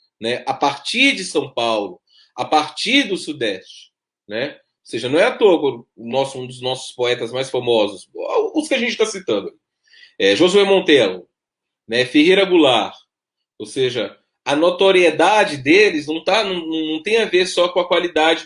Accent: Brazilian